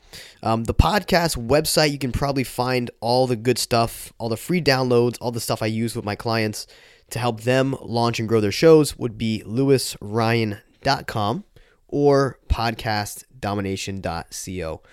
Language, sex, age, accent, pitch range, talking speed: English, male, 10-29, American, 105-130 Hz, 150 wpm